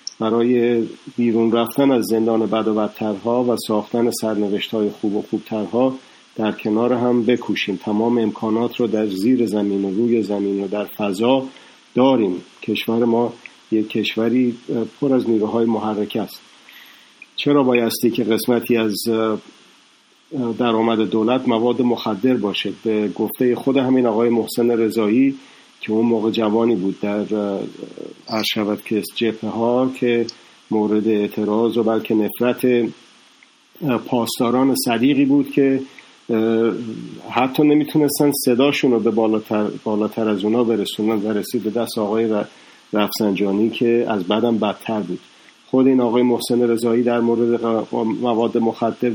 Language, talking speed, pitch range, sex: Persian, 130 wpm, 110-120 Hz, male